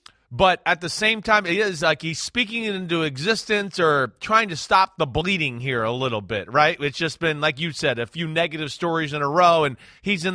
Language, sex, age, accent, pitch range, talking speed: English, male, 30-49, American, 150-200 Hz, 225 wpm